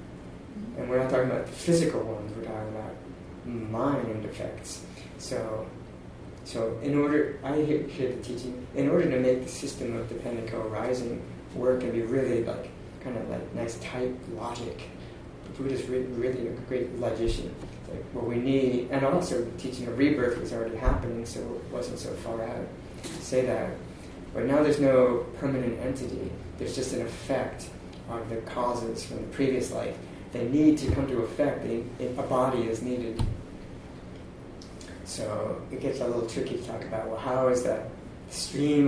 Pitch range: 115-130 Hz